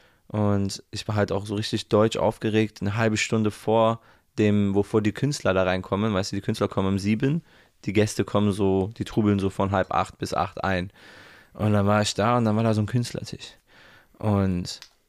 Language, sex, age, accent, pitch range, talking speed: German, male, 20-39, German, 100-115 Hz, 205 wpm